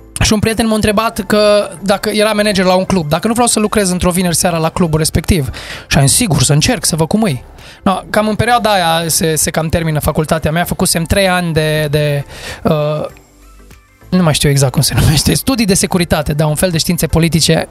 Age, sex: 20-39, male